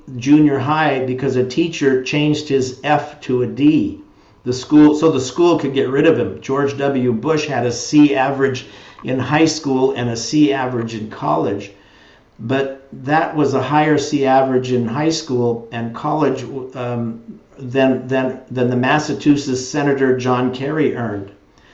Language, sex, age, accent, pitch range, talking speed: English, male, 50-69, American, 120-140 Hz, 165 wpm